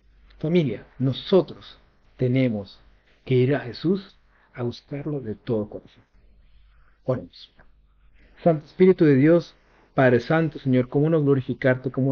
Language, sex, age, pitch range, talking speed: Spanish, male, 50-69, 125-165 Hz, 120 wpm